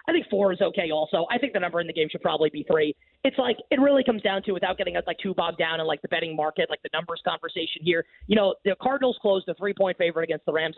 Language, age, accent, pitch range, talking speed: English, 30-49, American, 170-225 Hz, 290 wpm